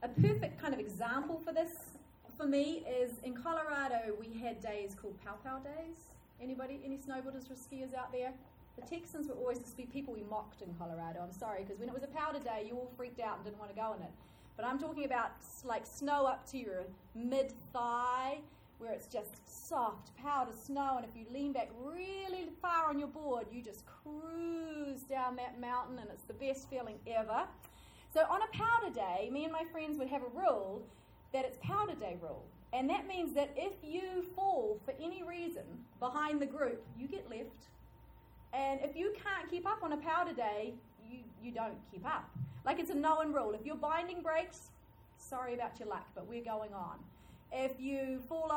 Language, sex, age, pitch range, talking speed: English, female, 30-49, 225-305 Hz, 200 wpm